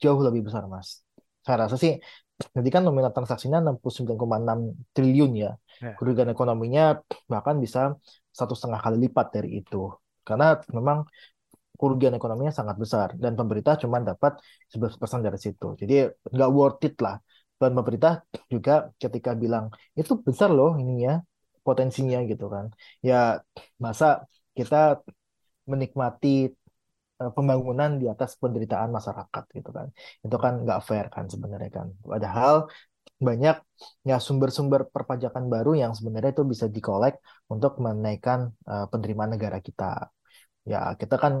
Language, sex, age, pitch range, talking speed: Indonesian, male, 20-39, 115-145 Hz, 140 wpm